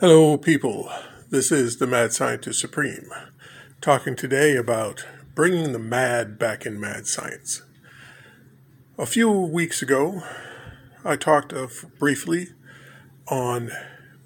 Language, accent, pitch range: English, American, 130-150 Hz